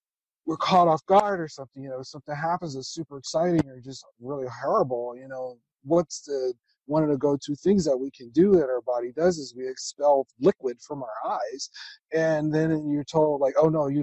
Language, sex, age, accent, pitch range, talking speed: English, male, 40-59, American, 130-170 Hz, 215 wpm